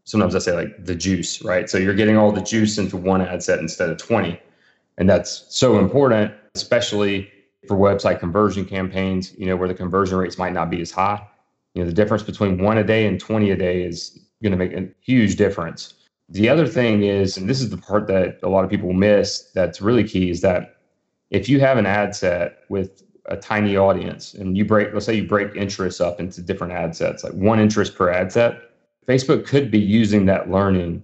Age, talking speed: 30-49, 220 wpm